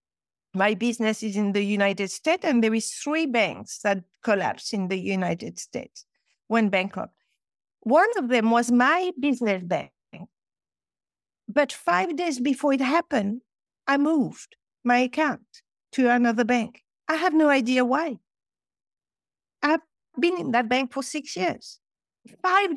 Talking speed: 140 wpm